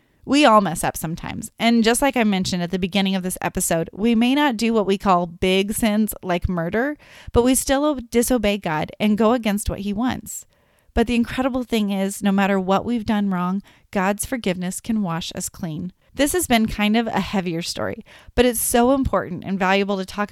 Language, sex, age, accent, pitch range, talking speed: English, female, 30-49, American, 185-235 Hz, 210 wpm